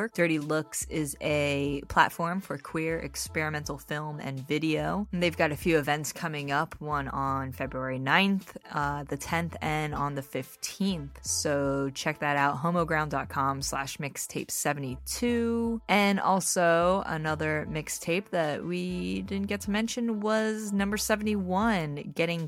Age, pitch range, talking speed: 20-39, 145-180 Hz, 135 wpm